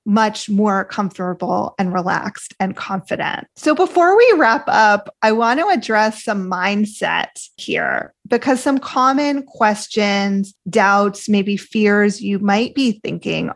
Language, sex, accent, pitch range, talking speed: English, female, American, 200-245 Hz, 135 wpm